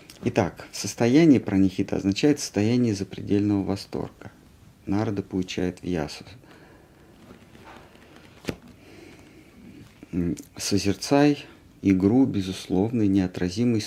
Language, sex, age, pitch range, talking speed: Russian, male, 50-69, 95-110 Hz, 65 wpm